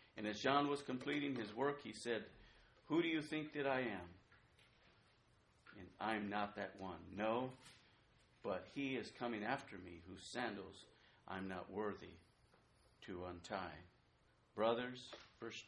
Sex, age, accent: male, 50-69, American